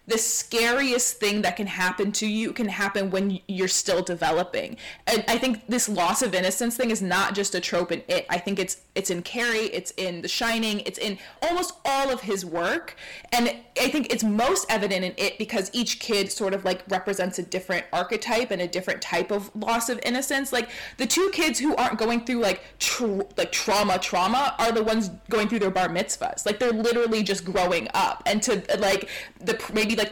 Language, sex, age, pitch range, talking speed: English, female, 20-39, 185-235 Hz, 210 wpm